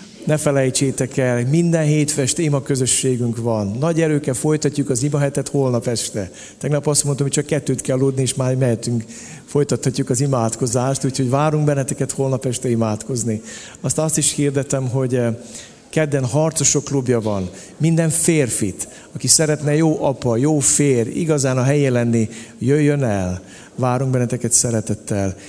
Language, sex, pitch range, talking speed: Hungarian, male, 120-140 Hz, 145 wpm